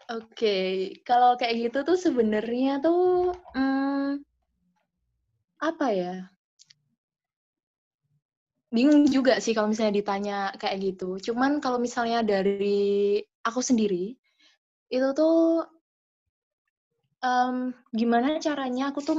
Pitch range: 200-250 Hz